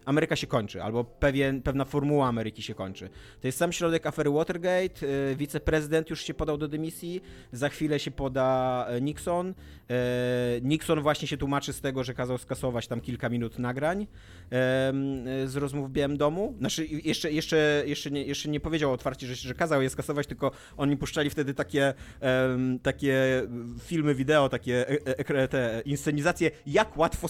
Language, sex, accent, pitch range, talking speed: Polish, male, native, 125-160 Hz, 145 wpm